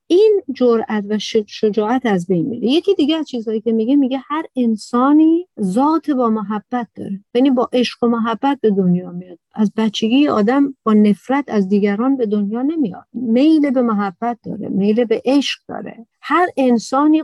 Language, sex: Persian, female